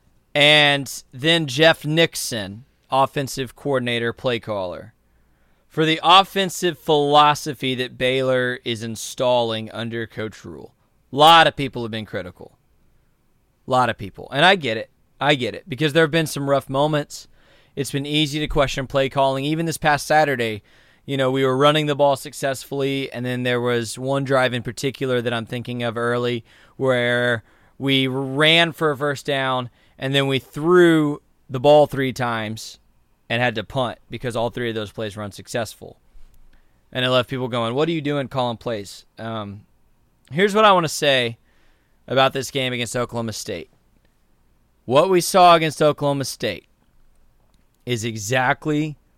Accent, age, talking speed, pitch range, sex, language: American, 20-39, 165 wpm, 115-145 Hz, male, English